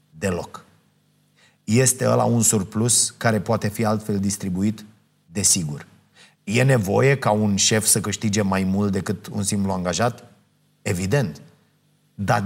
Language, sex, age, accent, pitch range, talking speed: Romanian, male, 30-49, native, 110-140 Hz, 125 wpm